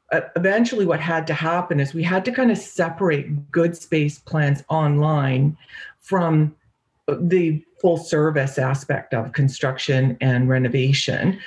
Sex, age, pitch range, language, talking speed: female, 40-59, 145-185 Hz, English, 130 wpm